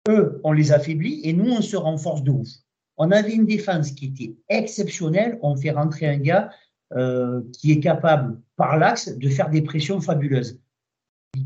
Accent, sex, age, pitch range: French, male, 50-69, 135-175 Hz